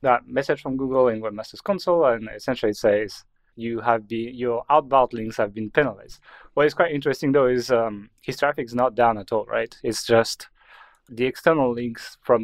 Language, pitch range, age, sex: English, 115-145 Hz, 30-49, male